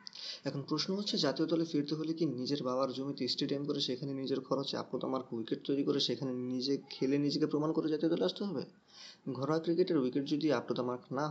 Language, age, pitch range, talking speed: Bengali, 20-39, 125-165 Hz, 165 wpm